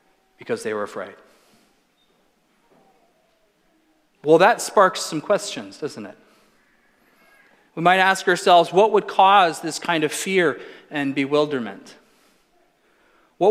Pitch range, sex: 145-200 Hz, male